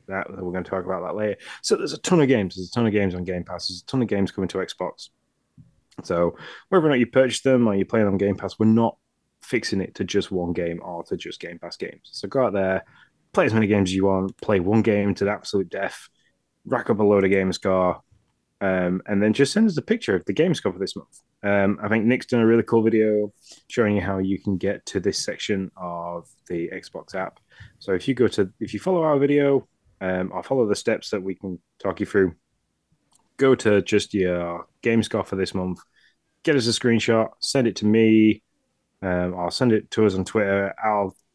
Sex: male